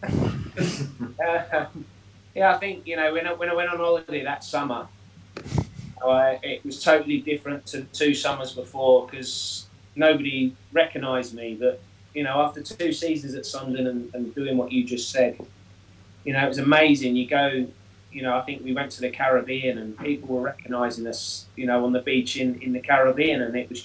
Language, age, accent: English, 30-49, British